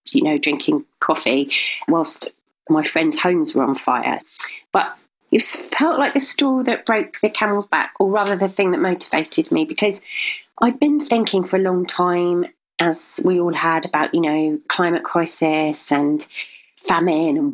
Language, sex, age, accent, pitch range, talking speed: English, female, 30-49, British, 160-245 Hz, 170 wpm